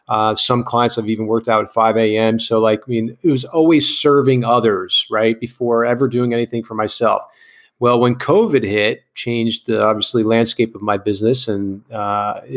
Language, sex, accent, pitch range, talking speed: English, male, American, 115-135 Hz, 185 wpm